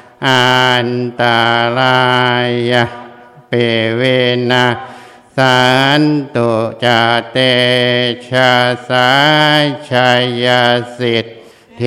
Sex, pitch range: male, 120-125 Hz